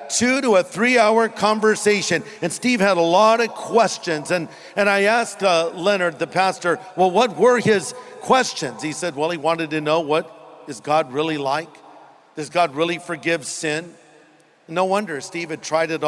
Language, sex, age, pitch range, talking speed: English, male, 50-69, 160-230 Hz, 185 wpm